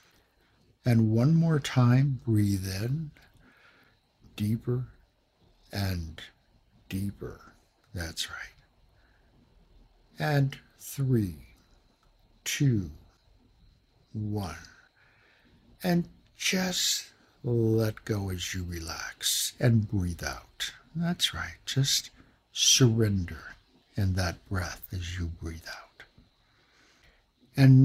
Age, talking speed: 60-79, 80 wpm